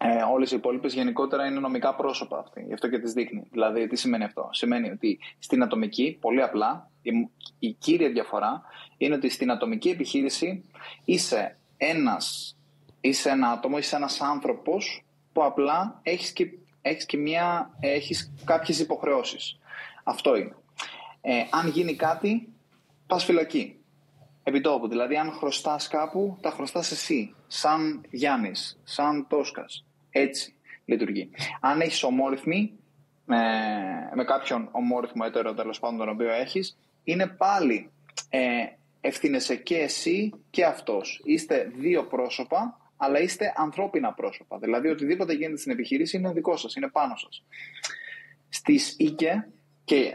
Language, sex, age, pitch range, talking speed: Greek, male, 20-39, 135-190 Hz, 135 wpm